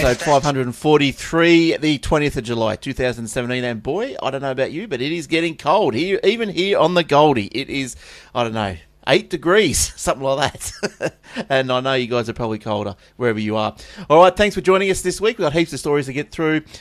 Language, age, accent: English, 30-49, Australian